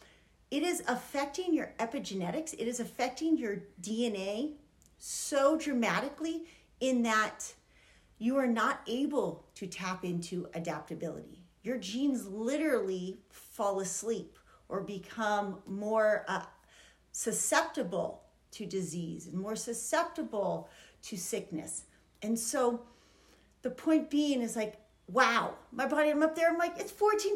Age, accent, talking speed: 40-59, American, 125 wpm